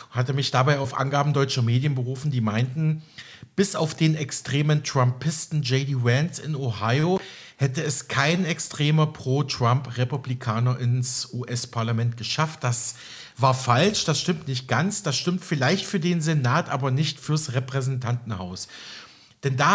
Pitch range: 130-170 Hz